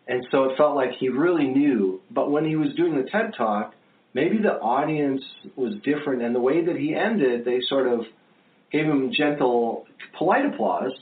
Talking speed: 190 wpm